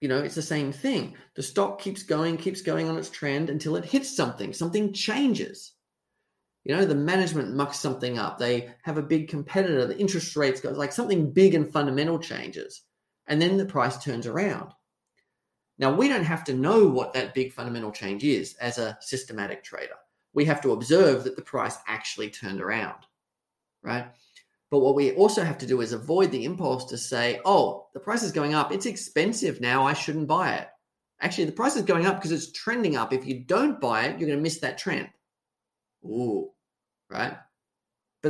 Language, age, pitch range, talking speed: English, 30-49, 135-195 Hz, 195 wpm